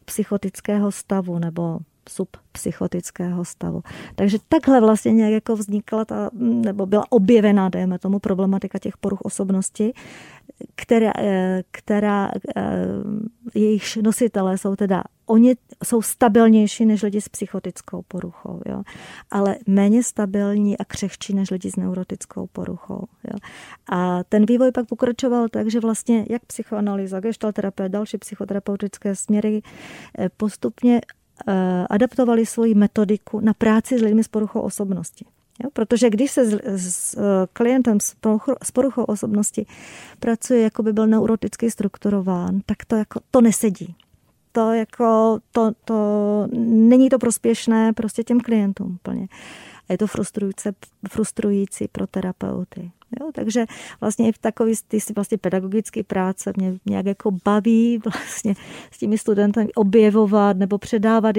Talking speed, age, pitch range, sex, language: 125 wpm, 30-49, 195-230 Hz, female, Czech